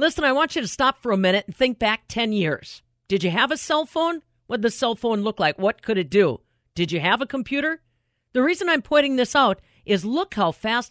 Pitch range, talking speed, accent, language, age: 195-270 Hz, 255 wpm, American, English, 50-69